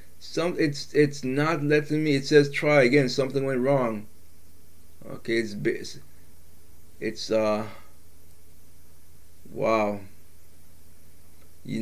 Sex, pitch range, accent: male, 95-140 Hz, American